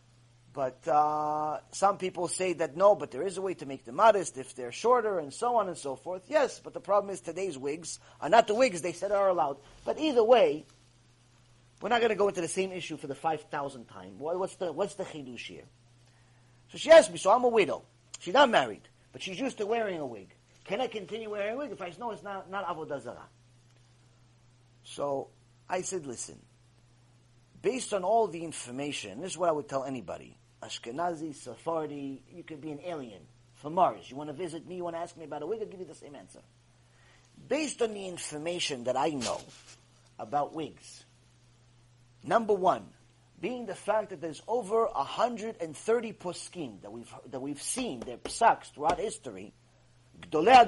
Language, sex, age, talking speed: English, male, 30-49, 200 wpm